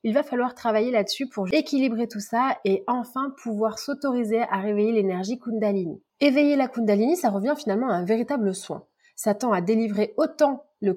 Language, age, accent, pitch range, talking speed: French, 30-49, French, 195-245 Hz, 180 wpm